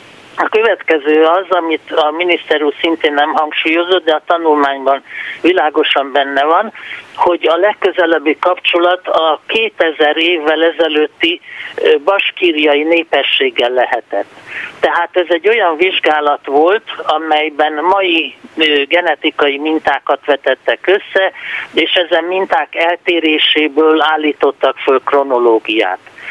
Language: Hungarian